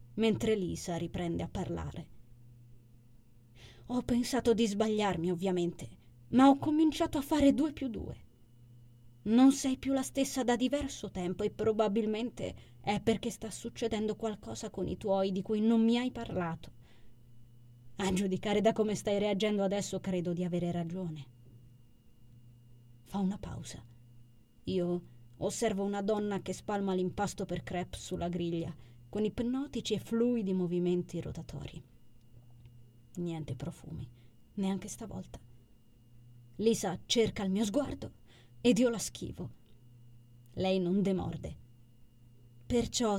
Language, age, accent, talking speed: Italian, 20-39, native, 125 wpm